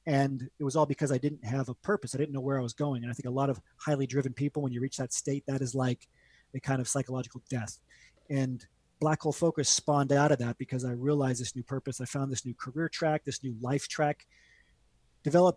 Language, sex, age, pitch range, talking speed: English, male, 30-49, 130-160 Hz, 245 wpm